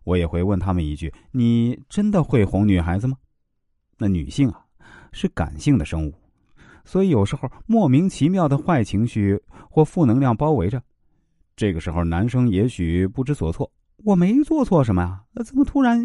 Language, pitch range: Chinese, 85-130 Hz